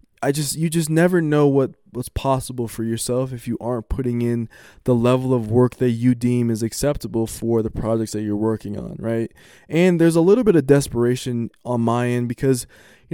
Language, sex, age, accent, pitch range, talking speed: English, male, 20-39, American, 115-130 Hz, 205 wpm